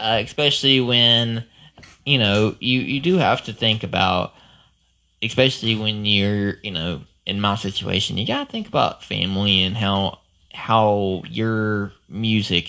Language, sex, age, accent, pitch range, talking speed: English, male, 20-39, American, 90-110 Hz, 145 wpm